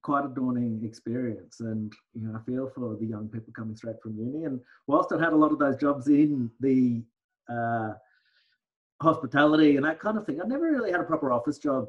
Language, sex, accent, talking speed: English, male, Australian, 215 wpm